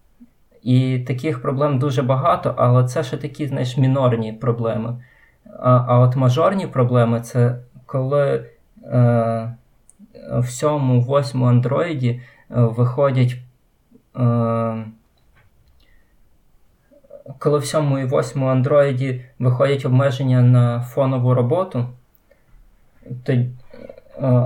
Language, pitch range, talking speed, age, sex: Ukrainian, 120-135 Hz, 80 wpm, 20-39, male